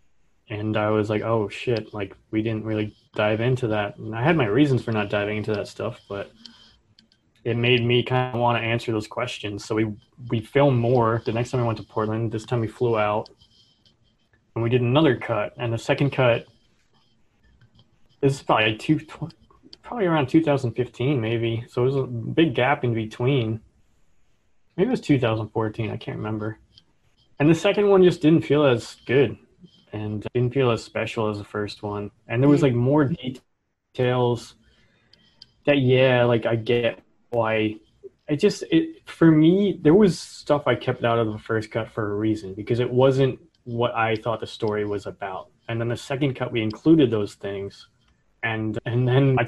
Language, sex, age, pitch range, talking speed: English, male, 20-39, 110-130 Hz, 190 wpm